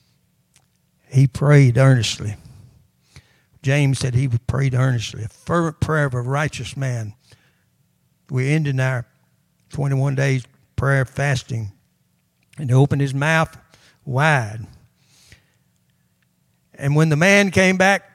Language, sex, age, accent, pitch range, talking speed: English, male, 60-79, American, 130-185 Hz, 115 wpm